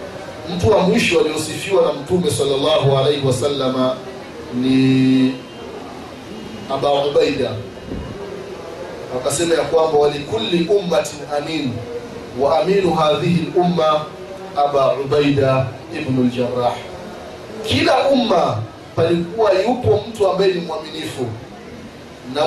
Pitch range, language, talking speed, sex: 130-170 Hz, Swahili, 95 wpm, male